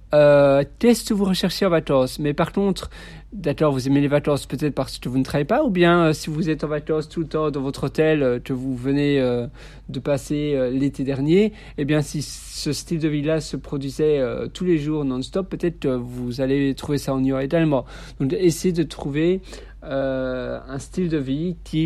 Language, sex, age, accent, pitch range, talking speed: French, male, 50-69, French, 135-165 Hz, 215 wpm